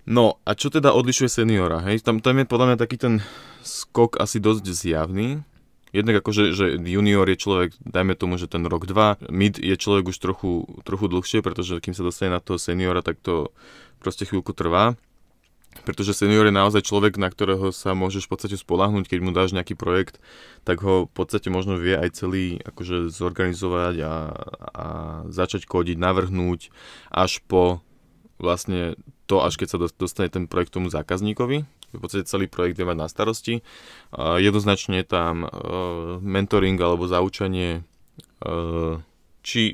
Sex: male